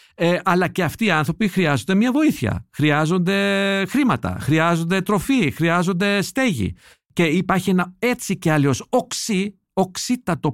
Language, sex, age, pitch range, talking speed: Greek, male, 50-69, 145-205 Hz, 120 wpm